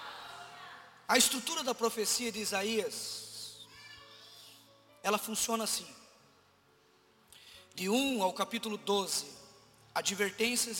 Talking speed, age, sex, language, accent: 85 wpm, 20-39, male, Portuguese, Brazilian